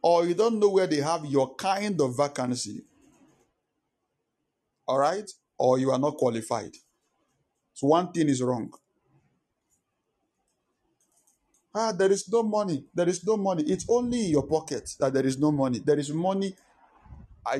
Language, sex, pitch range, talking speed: English, male, 130-180 Hz, 155 wpm